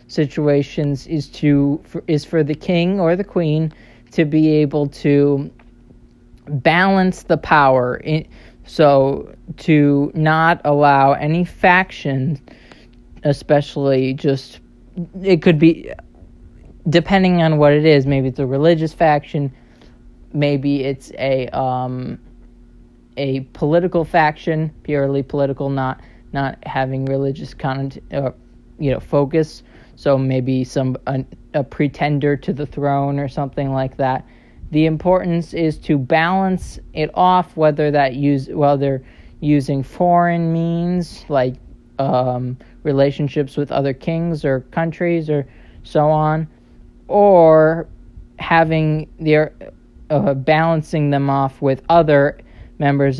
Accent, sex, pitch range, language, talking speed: American, male, 135-160 Hz, English, 120 wpm